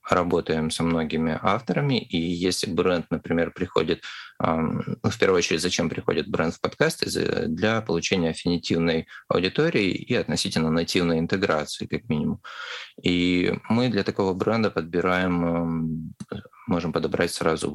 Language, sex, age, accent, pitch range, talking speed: Russian, male, 20-39, native, 80-100 Hz, 130 wpm